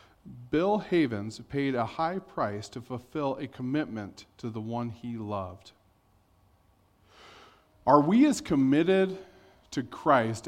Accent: American